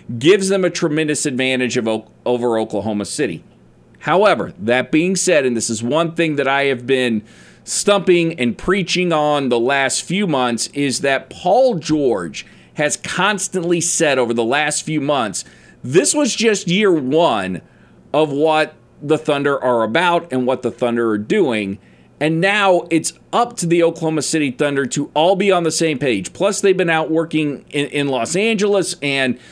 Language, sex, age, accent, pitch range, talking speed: English, male, 40-59, American, 125-170 Hz, 170 wpm